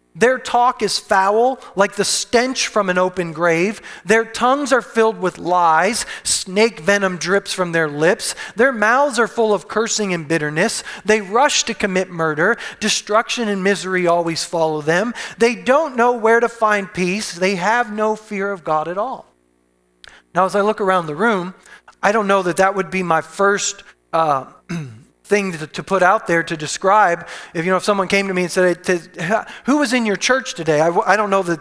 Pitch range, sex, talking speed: 175-235 Hz, male, 190 wpm